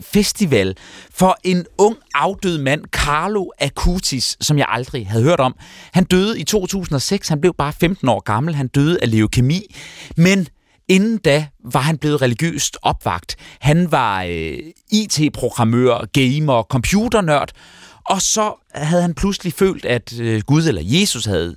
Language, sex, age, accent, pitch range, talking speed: Danish, male, 30-49, native, 120-170 Hz, 145 wpm